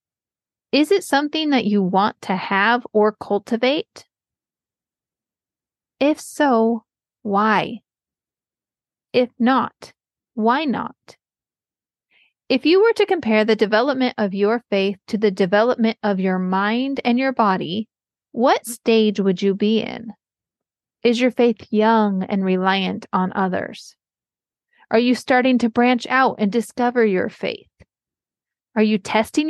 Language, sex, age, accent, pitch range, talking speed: English, female, 30-49, American, 200-250 Hz, 130 wpm